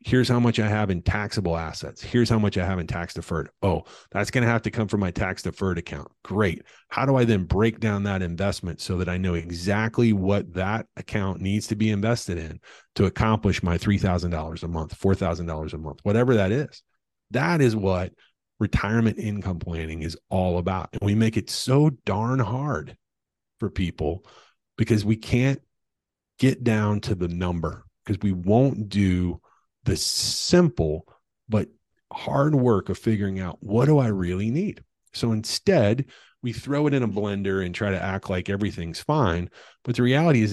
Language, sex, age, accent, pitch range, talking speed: English, male, 30-49, American, 90-115 Hz, 185 wpm